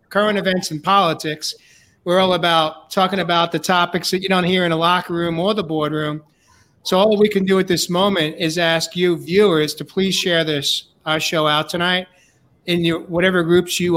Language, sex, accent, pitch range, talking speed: English, male, American, 160-190 Hz, 200 wpm